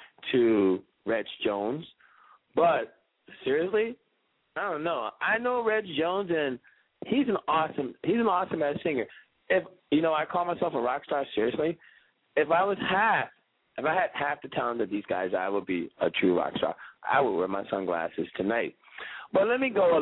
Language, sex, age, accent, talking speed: English, male, 40-59, American, 185 wpm